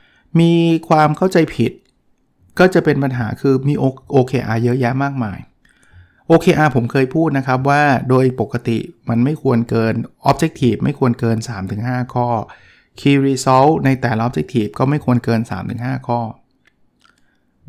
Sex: male